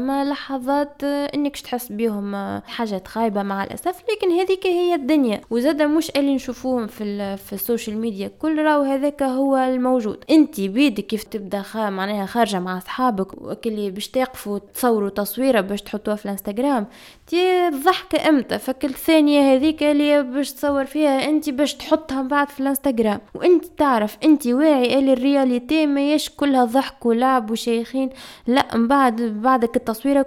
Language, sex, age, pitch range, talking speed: Arabic, female, 20-39, 215-275 Hz, 140 wpm